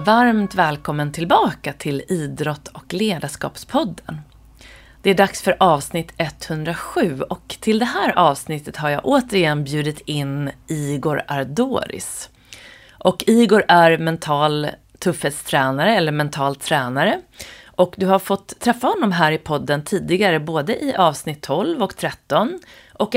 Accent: native